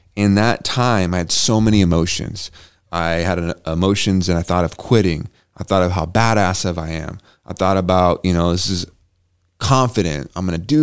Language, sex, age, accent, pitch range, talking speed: English, male, 30-49, American, 90-120 Hz, 200 wpm